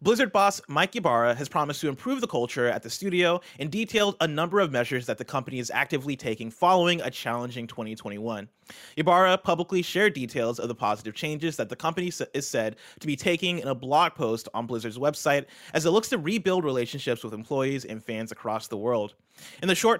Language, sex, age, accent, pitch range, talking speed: English, male, 30-49, American, 125-175 Hz, 205 wpm